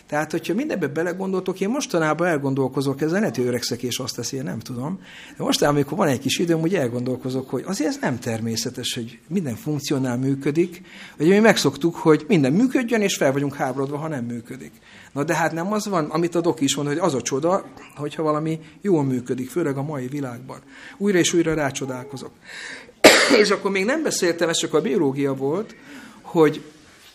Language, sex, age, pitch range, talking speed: Hungarian, male, 60-79, 135-170 Hz, 190 wpm